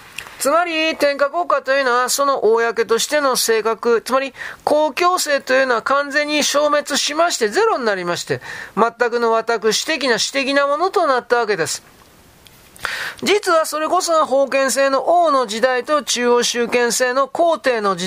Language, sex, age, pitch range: Japanese, male, 40-59, 215-285 Hz